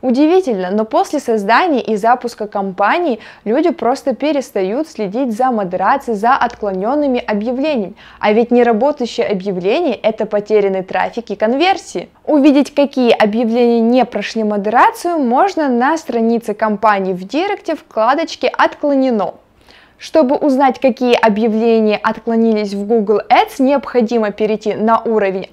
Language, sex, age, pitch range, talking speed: Russian, female, 20-39, 215-285 Hz, 120 wpm